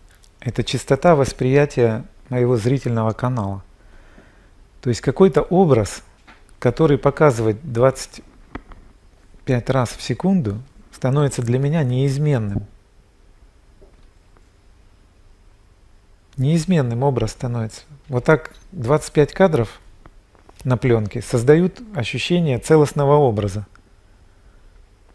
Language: Russian